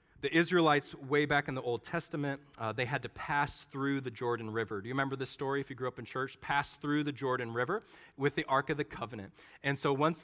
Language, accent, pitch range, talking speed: English, American, 125-165 Hz, 245 wpm